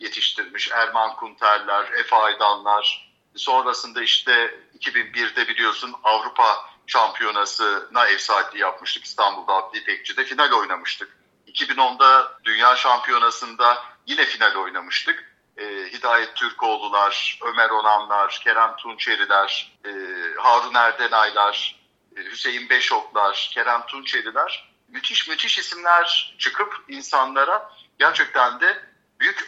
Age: 50-69